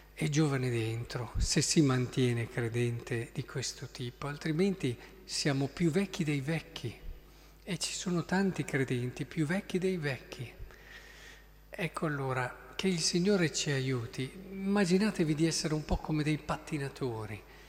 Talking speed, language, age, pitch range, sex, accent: 135 wpm, Italian, 50-69, 130-175 Hz, male, native